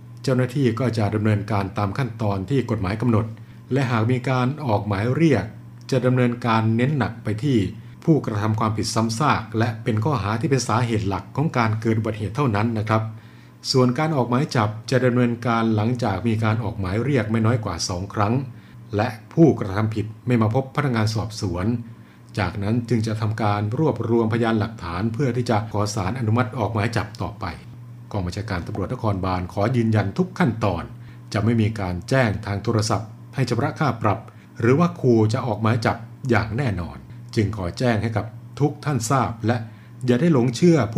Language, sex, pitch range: Thai, male, 105-125 Hz